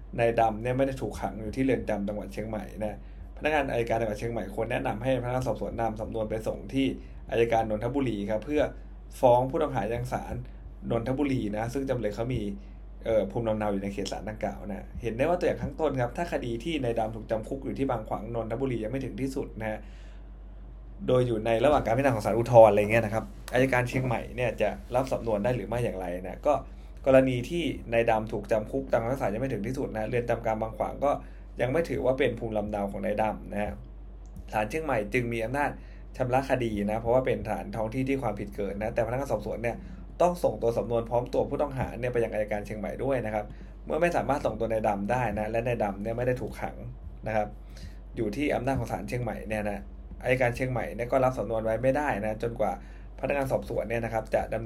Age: 20-39